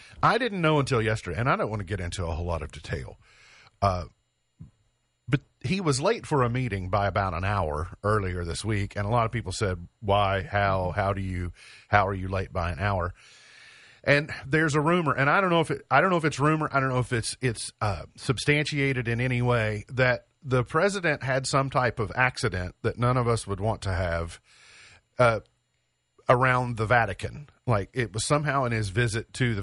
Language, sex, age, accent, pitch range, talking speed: English, male, 40-59, American, 100-130 Hz, 215 wpm